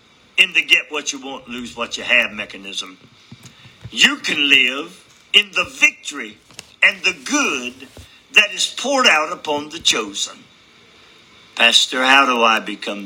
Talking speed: 115 wpm